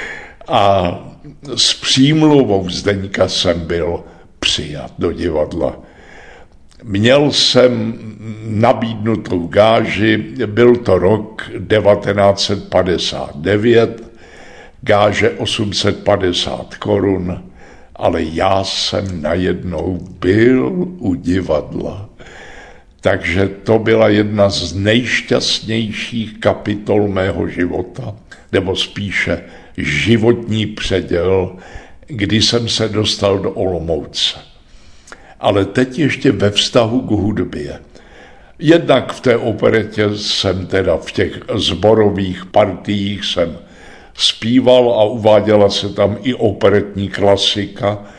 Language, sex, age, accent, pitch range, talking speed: Czech, male, 60-79, native, 95-110 Hz, 90 wpm